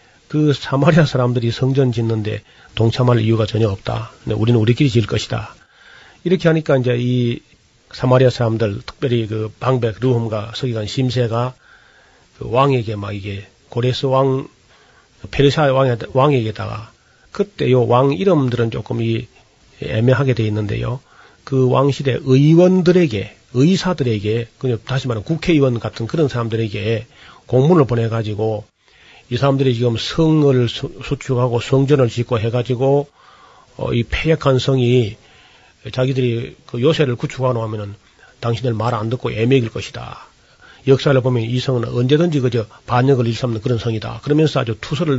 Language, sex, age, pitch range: Korean, male, 40-59, 115-135 Hz